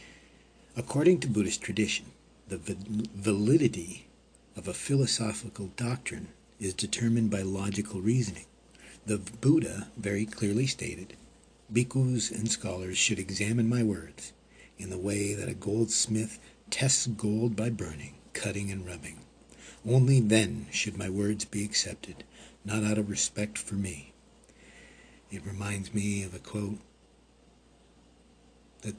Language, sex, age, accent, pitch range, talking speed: English, male, 60-79, American, 100-115 Hz, 125 wpm